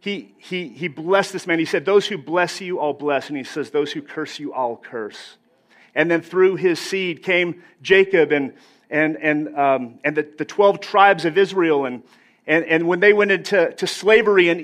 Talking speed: 210 wpm